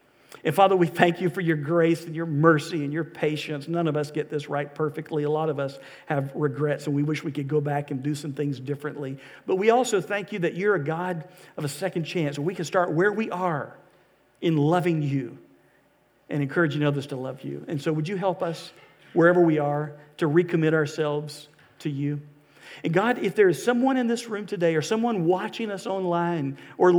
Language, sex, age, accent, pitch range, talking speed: English, male, 50-69, American, 145-185 Hz, 215 wpm